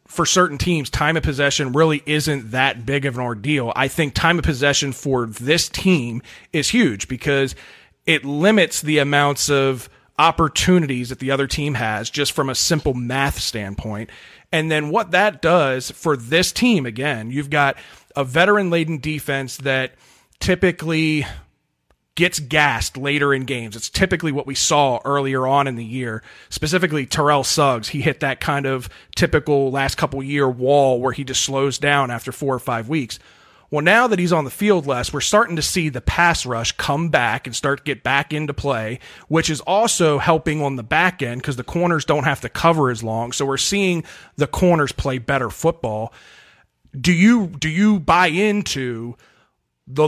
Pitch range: 130-160 Hz